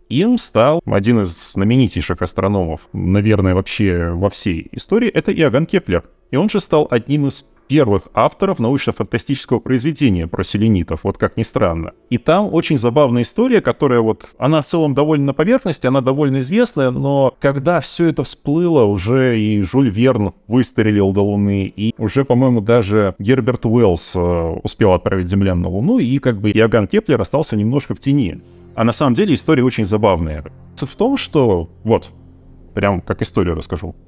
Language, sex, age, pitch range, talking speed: Russian, male, 30-49, 100-140 Hz, 165 wpm